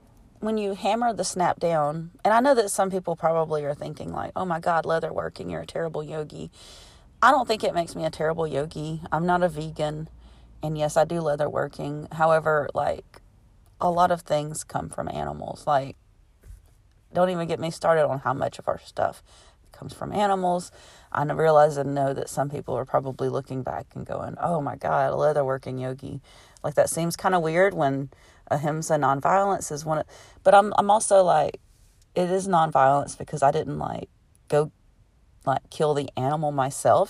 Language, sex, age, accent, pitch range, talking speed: English, female, 30-49, American, 135-175 Hz, 190 wpm